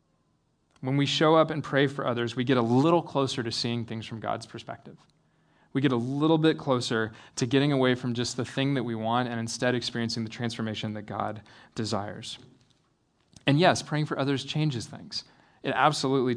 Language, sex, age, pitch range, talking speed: English, male, 20-39, 115-135 Hz, 190 wpm